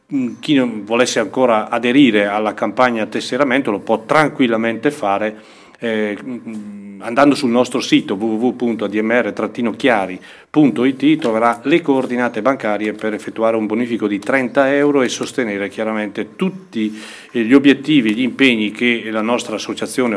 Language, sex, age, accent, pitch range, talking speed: Italian, male, 40-59, native, 105-135 Hz, 130 wpm